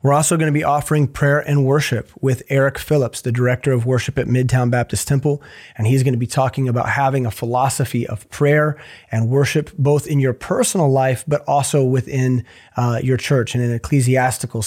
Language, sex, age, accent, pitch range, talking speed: English, male, 30-49, American, 125-145 Hz, 190 wpm